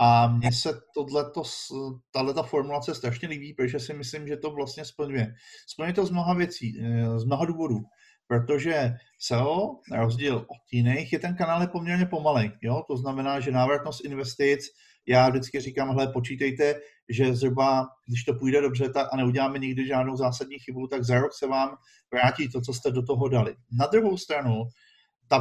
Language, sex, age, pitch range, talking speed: Slovak, male, 50-69, 125-155 Hz, 170 wpm